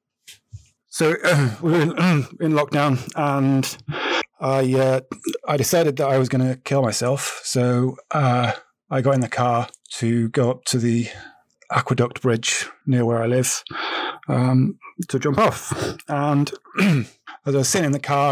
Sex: male